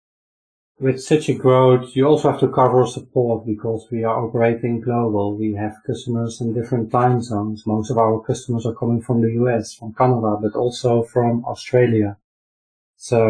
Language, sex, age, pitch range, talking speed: English, male, 30-49, 115-130 Hz, 170 wpm